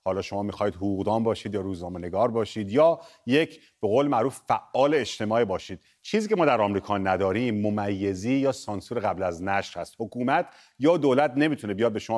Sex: male